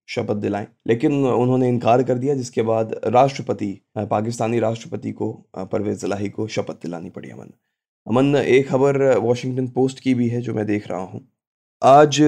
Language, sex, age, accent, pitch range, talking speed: Hindi, male, 20-39, native, 110-130 Hz, 165 wpm